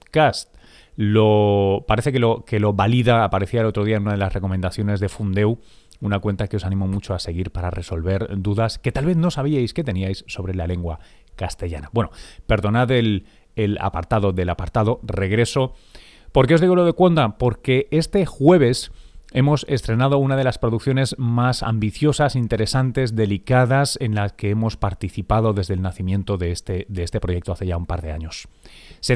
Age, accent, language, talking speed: 30-49, Spanish, Spanish, 180 wpm